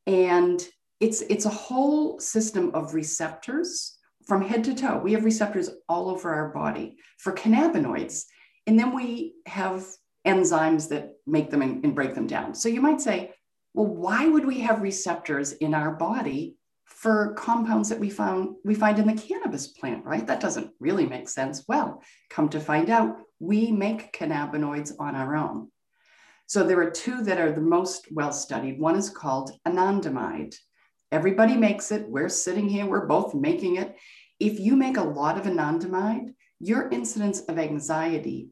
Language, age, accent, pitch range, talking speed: English, 40-59, American, 165-235 Hz, 170 wpm